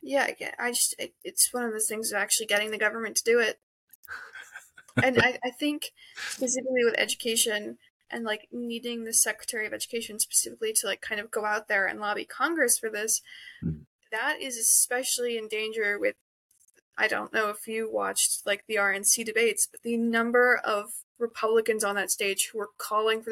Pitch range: 220-260 Hz